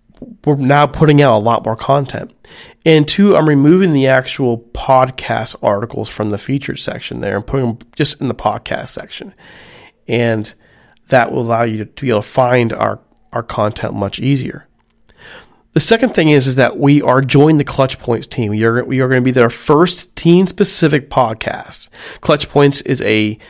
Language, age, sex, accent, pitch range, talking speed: English, 40-59, male, American, 115-145 Hz, 185 wpm